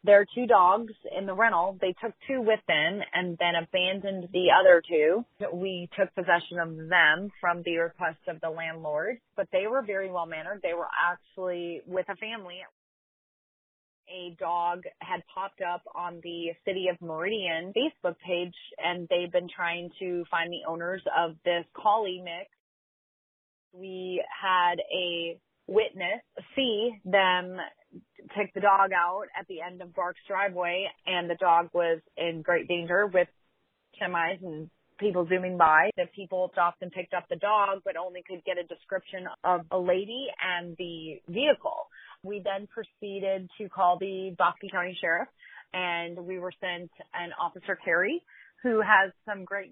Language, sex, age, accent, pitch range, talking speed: English, female, 30-49, American, 175-200 Hz, 160 wpm